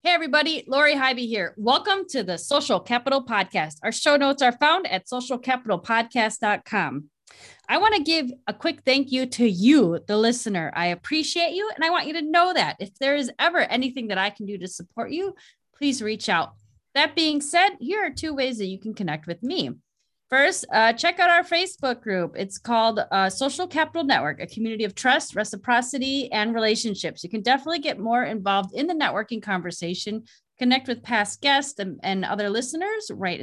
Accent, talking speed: American, 190 wpm